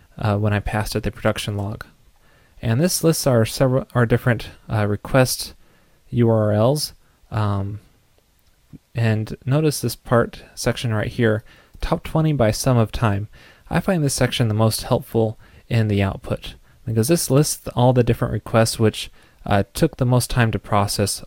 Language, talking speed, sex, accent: English, 160 wpm, male, American